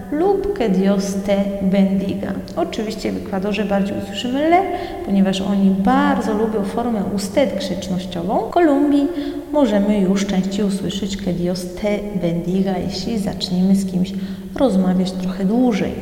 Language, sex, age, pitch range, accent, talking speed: Polish, female, 30-49, 190-220 Hz, native, 125 wpm